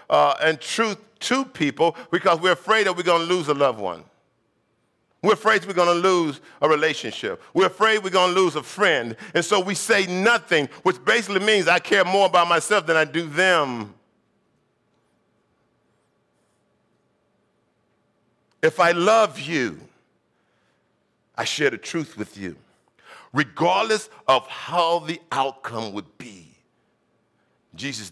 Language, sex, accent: English, male, American